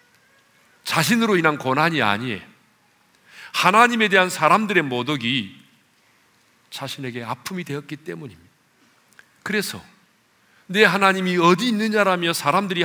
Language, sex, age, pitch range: Korean, male, 40-59, 115-160 Hz